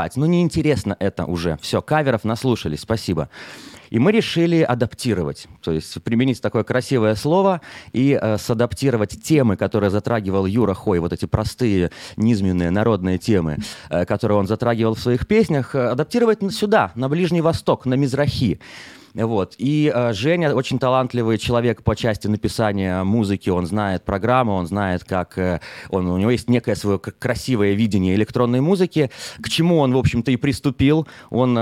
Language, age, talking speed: English, 30-49, 160 wpm